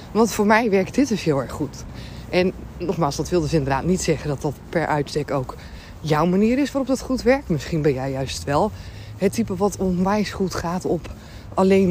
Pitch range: 155-205 Hz